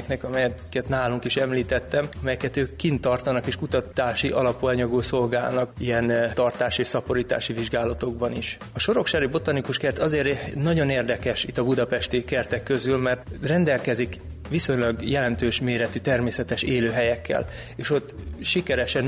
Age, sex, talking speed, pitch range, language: 20-39, male, 125 wpm, 120-130 Hz, Hungarian